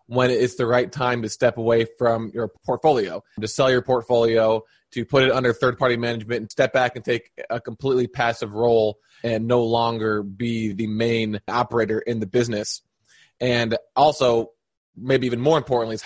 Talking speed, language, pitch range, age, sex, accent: 175 wpm, English, 115-125 Hz, 20-39, male, American